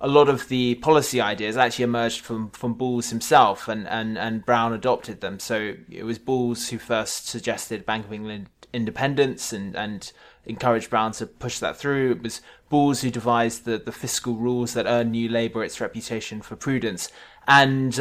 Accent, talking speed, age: British, 185 wpm, 20-39